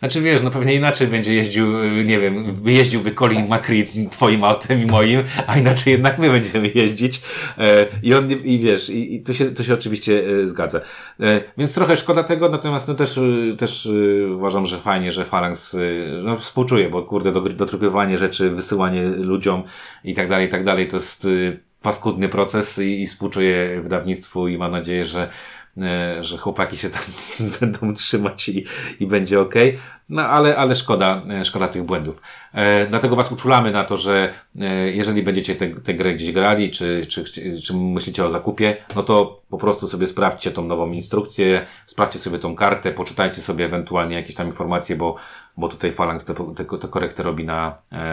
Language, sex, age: Polish, male, 30-49